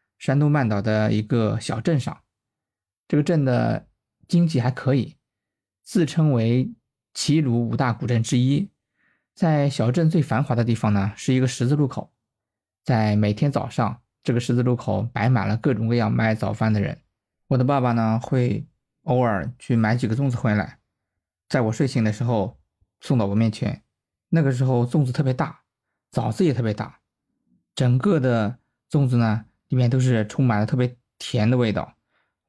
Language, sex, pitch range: Chinese, male, 110-135 Hz